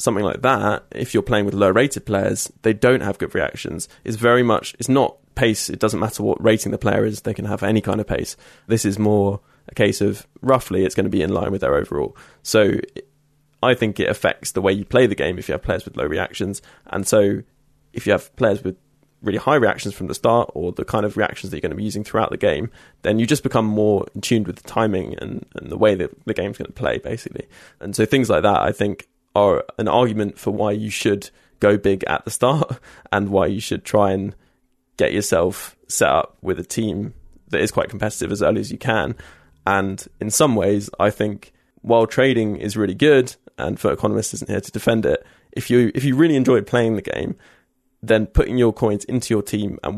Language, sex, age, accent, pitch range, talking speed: English, male, 20-39, British, 100-120 Hz, 235 wpm